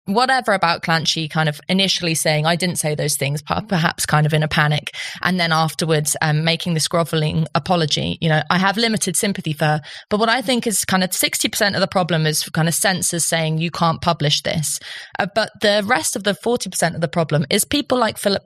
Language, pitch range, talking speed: English, 165-210 Hz, 220 wpm